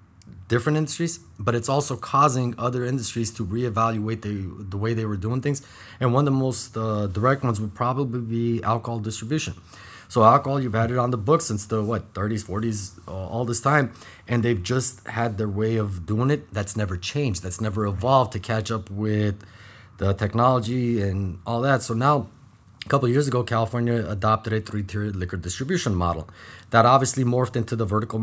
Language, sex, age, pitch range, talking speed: English, male, 30-49, 105-130 Hz, 195 wpm